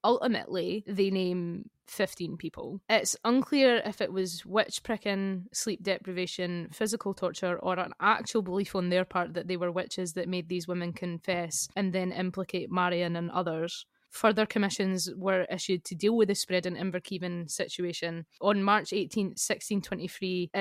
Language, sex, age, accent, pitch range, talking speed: English, female, 20-39, British, 175-195 Hz, 155 wpm